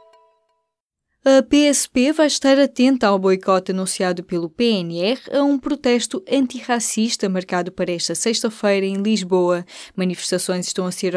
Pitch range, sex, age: 185-245 Hz, female, 20-39